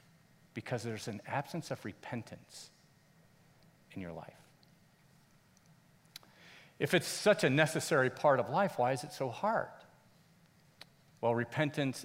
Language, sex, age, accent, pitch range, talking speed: English, male, 40-59, American, 115-160 Hz, 120 wpm